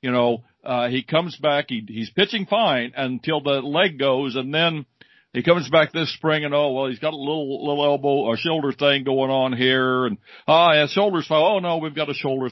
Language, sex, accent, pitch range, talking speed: English, male, American, 130-165 Hz, 225 wpm